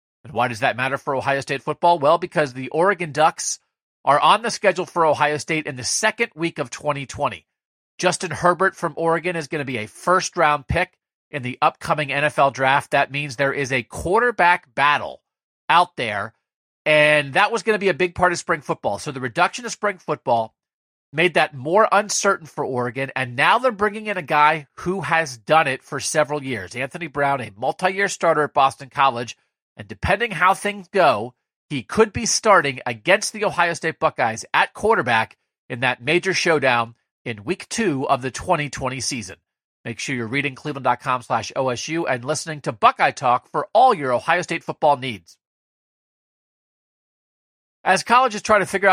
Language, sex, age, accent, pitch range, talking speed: English, male, 40-59, American, 135-180 Hz, 180 wpm